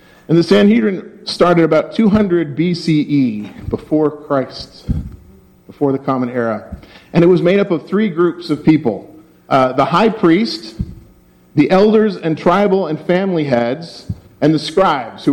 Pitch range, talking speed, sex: 130-175 Hz, 150 wpm, male